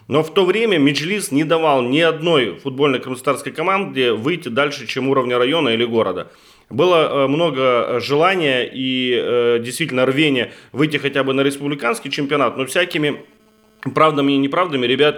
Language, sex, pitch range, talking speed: Russian, male, 120-145 Hz, 145 wpm